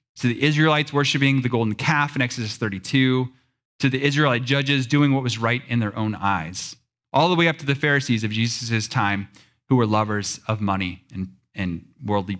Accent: American